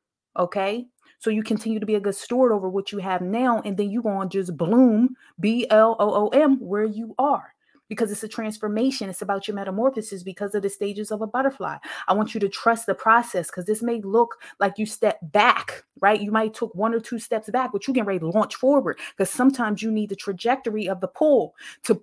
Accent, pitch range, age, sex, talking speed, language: American, 210-265 Hz, 20-39, female, 220 wpm, English